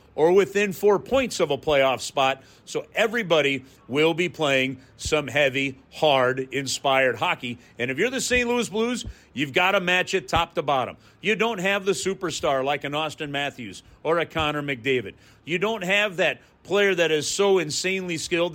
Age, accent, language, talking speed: 40-59, American, English, 180 wpm